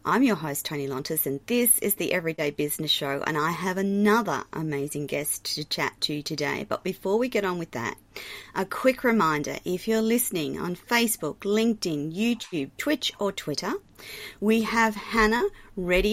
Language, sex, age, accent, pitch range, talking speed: English, female, 30-49, Australian, 170-215 Hz, 175 wpm